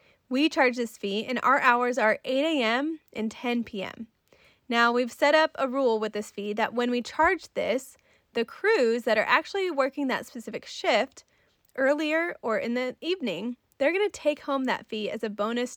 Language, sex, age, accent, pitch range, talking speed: English, female, 20-39, American, 220-285 Hz, 195 wpm